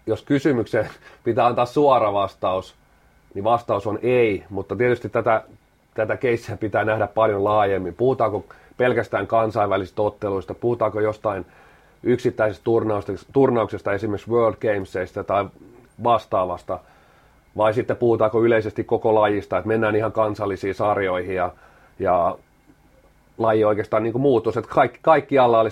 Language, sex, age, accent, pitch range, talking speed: Finnish, male, 30-49, native, 100-120 Hz, 120 wpm